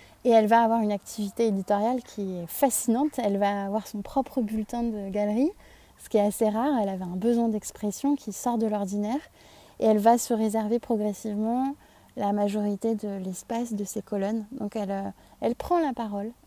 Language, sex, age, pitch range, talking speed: French, female, 20-39, 205-250 Hz, 185 wpm